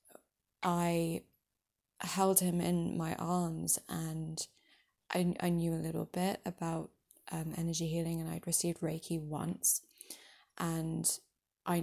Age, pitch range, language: 20-39, 165-185 Hz, English